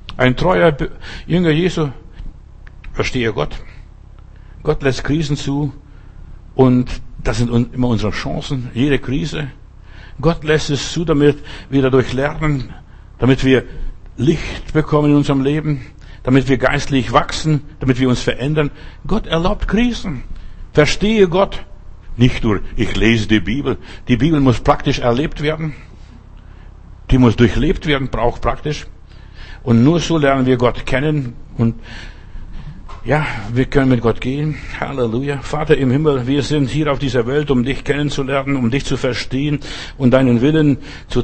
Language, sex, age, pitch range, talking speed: German, male, 60-79, 115-145 Hz, 145 wpm